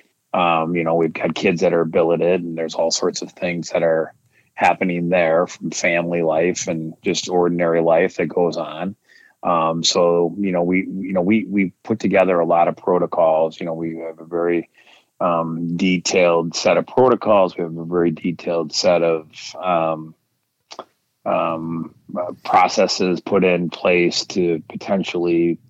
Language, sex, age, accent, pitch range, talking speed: English, male, 30-49, American, 85-95 Hz, 165 wpm